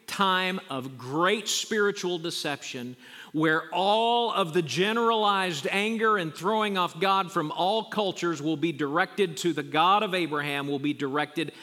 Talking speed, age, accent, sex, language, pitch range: 145 wpm, 50-69, American, male, English, 135-185 Hz